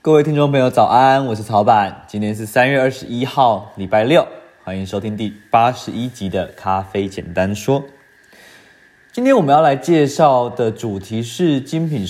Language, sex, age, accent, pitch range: Chinese, male, 20-39, native, 105-140 Hz